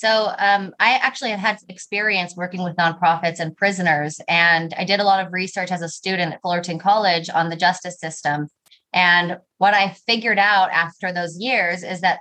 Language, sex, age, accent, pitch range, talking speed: English, female, 20-39, American, 175-205 Hz, 190 wpm